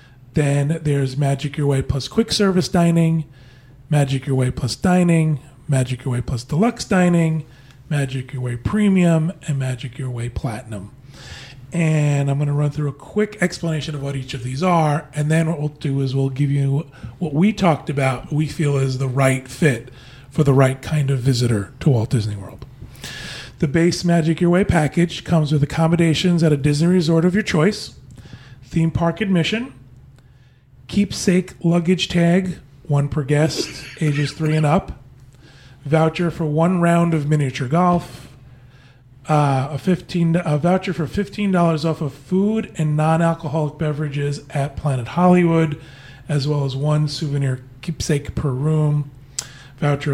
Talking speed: 160 wpm